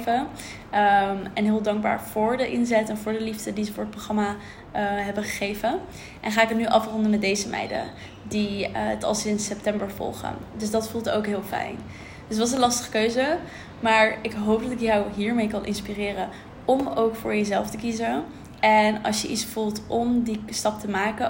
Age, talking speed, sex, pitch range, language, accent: 20-39, 200 wpm, female, 205-230 Hz, Dutch, Dutch